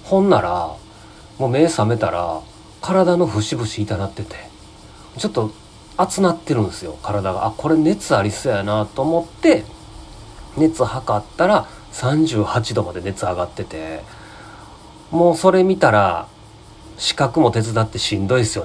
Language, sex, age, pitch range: Japanese, male, 40-59, 95-120 Hz